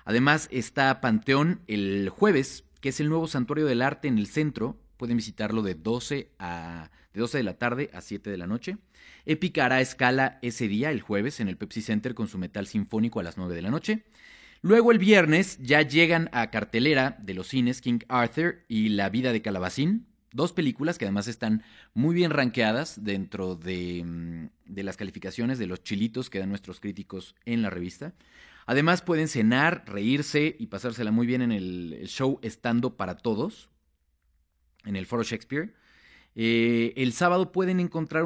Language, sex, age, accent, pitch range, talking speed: Spanish, male, 30-49, Mexican, 100-155 Hz, 175 wpm